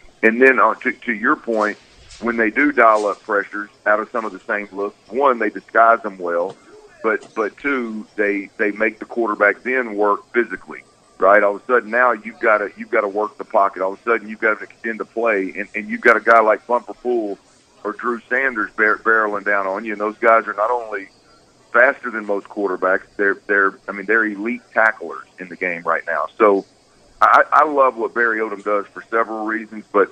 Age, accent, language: 40-59, American, English